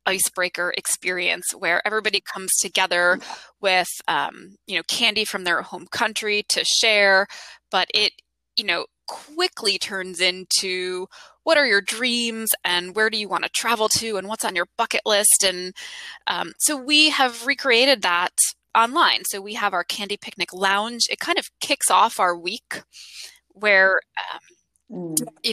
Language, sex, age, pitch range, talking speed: English, female, 20-39, 185-235 Hz, 160 wpm